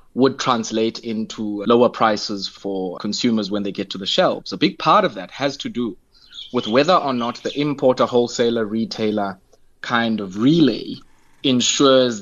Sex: male